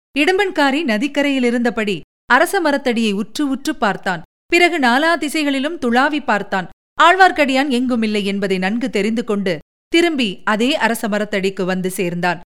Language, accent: Tamil, native